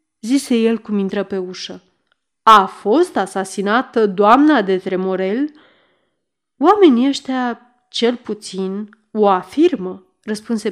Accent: native